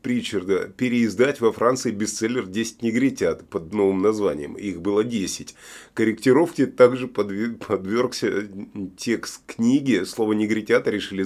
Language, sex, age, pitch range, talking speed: Russian, male, 30-49, 100-130 Hz, 110 wpm